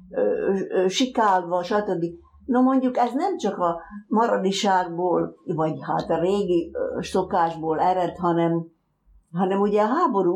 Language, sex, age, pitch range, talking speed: Hungarian, female, 60-79, 165-210 Hz, 115 wpm